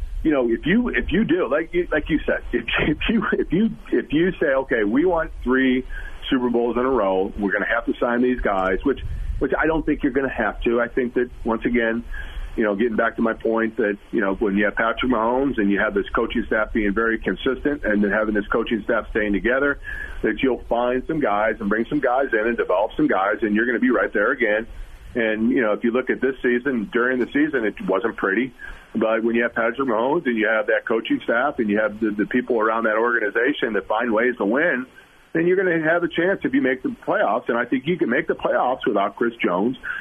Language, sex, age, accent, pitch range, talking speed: English, male, 40-59, American, 105-160 Hz, 255 wpm